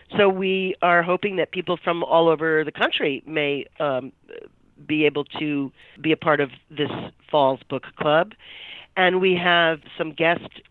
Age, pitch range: 40-59, 145-170 Hz